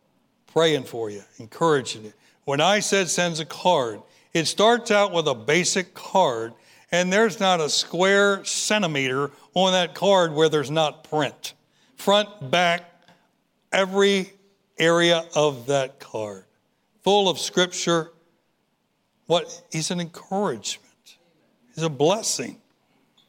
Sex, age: male, 60-79